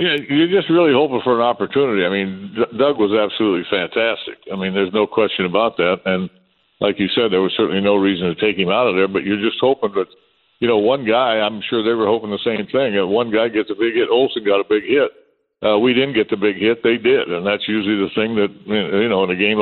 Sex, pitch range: male, 100-120 Hz